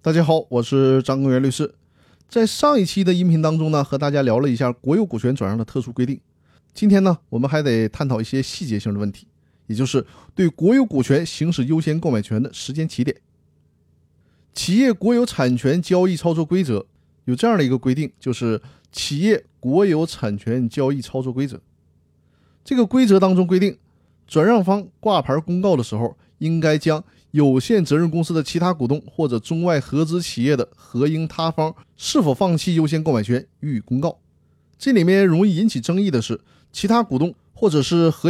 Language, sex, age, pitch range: Chinese, male, 30-49, 120-175 Hz